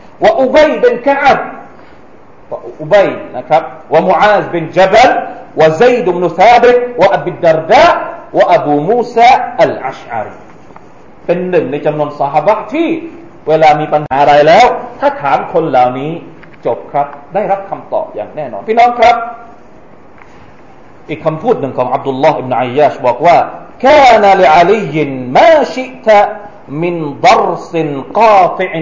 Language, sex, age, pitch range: Thai, male, 40-59, 155-235 Hz